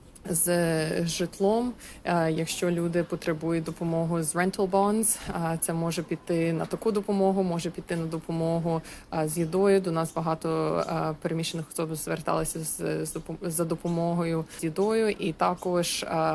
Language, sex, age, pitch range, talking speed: Ukrainian, female, 20-39, 160-175 Hz, 120 wpm